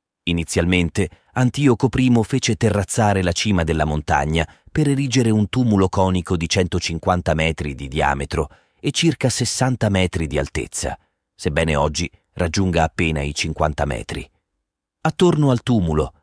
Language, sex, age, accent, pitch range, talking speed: Italian, male, 40-59, native, 80-110 Hz, 130 wpm